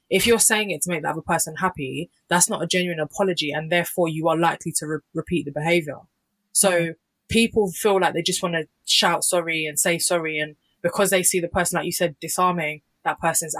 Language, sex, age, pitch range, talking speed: English, female, 20-39, 160-195 Hz, 215 wpm